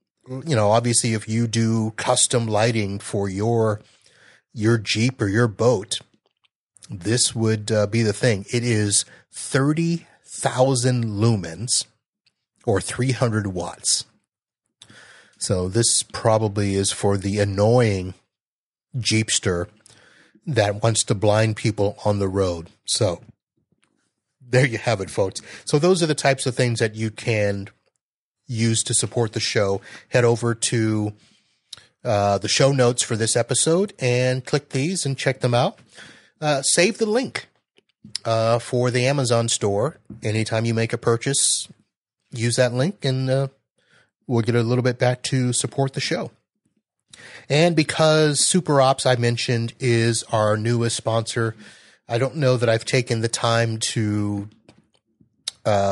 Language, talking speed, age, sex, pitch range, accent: English, 140 wpm, 30-49, male, 110-130 Hz, American